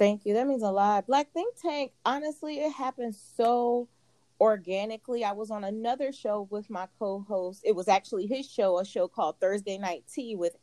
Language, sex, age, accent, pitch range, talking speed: English, female, 30-49, American, 190-240 Hz, 190 wpm